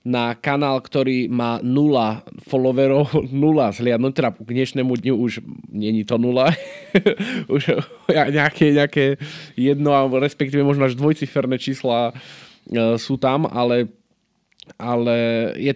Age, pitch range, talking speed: 20-39, 115-145 Hz, 125 wpm